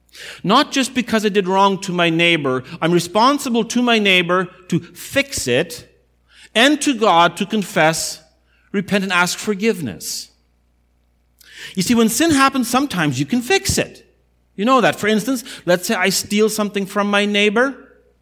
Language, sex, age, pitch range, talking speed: English, male, 50-69, 170-225 Hz, 160 wpm